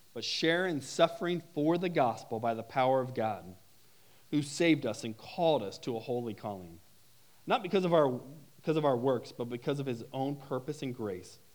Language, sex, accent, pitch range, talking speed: English, male, American, 115-145 Hz, 195 wpm